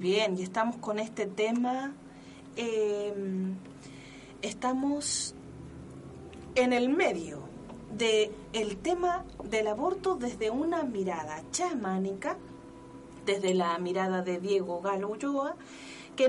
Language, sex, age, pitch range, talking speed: Spanish, female, 30-49, 205-260 Hz, 105 wpm